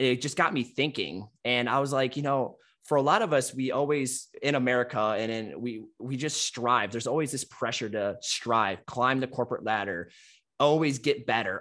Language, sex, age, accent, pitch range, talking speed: English, male, 20-39, American, 110-135 Hz, 200 wpm